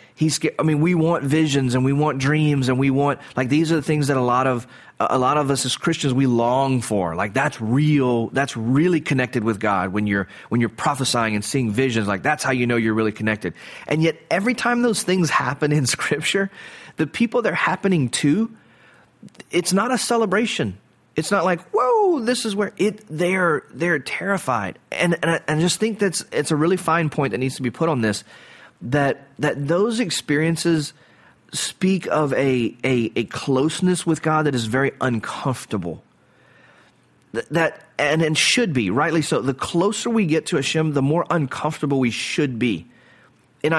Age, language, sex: 30-49, English, male